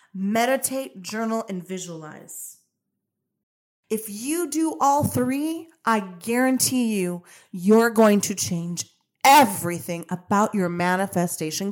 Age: 30-49